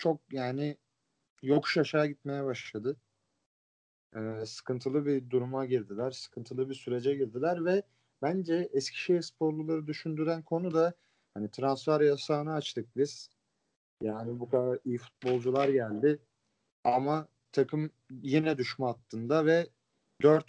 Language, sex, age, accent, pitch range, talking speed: Turkish, male, 40-59, native, 115-150 Hz, 115 wpm